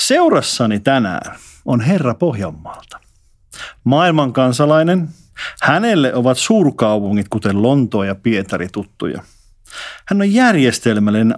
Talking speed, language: 90 wpm, Finnish